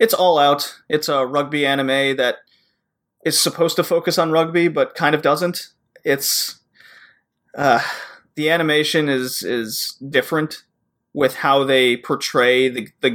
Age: 30-49